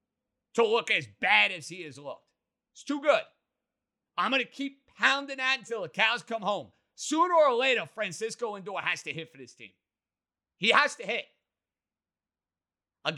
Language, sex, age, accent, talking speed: English, male, 30-49, American, 175 wpm